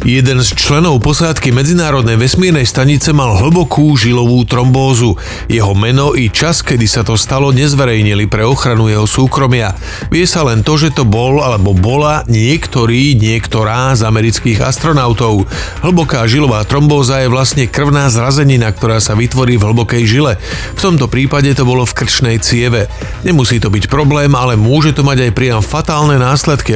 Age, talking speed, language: 40-59, 160 wpm, Slovak